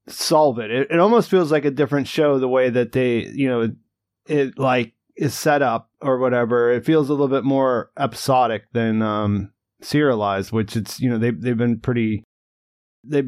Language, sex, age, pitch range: English, male, 30-49, 125-155 Hz